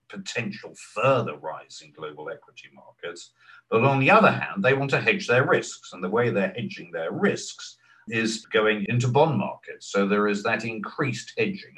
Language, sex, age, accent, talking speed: English, male, 50-69, British, 185 wpm